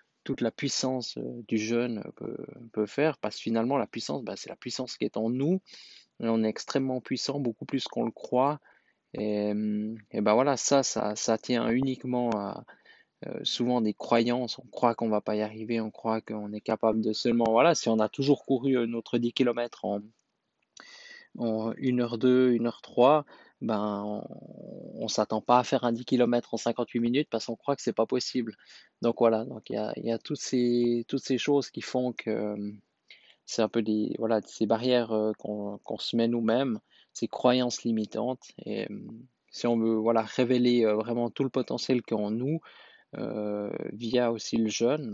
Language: French